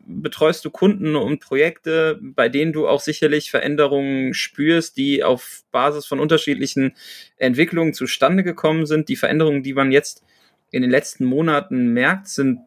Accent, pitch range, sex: German, 130-170 Hz, male